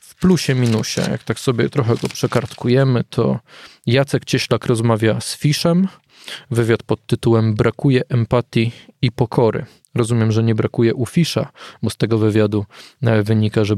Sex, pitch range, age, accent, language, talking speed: male, 110-130 Hz, 20-39, native, Polish, 145 wpm